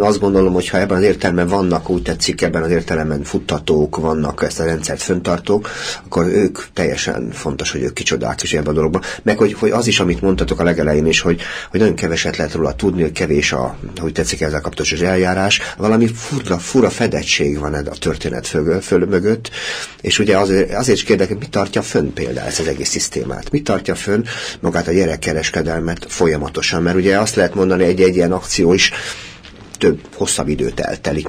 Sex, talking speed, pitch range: male, 190 wpm, 80-95 Hz